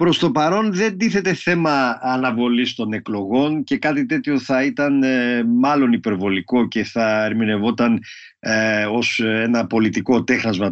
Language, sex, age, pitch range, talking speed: Greek, male, 50-69, 115-190 Hz, 130 wpm